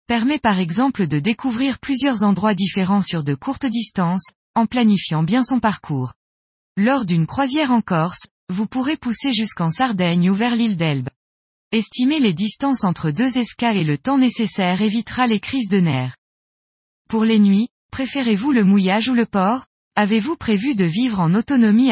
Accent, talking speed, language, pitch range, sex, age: French, 165 wpm, French, 185-245 Hz, female, 20-39